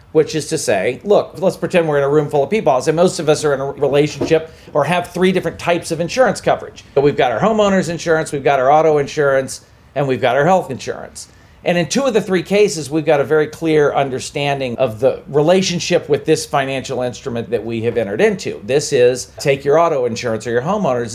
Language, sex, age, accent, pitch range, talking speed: English, male, 40-59, American, 140-180 Hz, 230 wpm